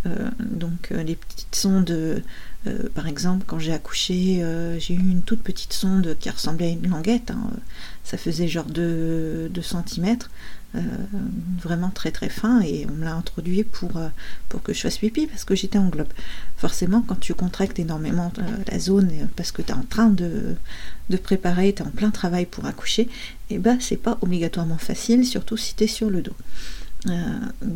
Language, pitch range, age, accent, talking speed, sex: French, 170-210 Hz, 40-59, French, 195 wpm, female